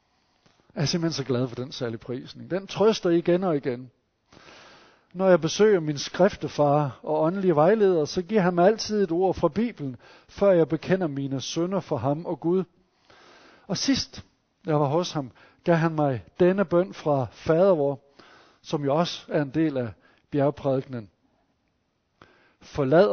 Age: 60-79